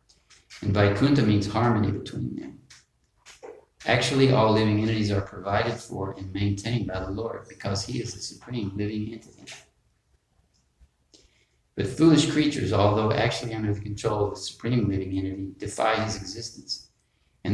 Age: 50-69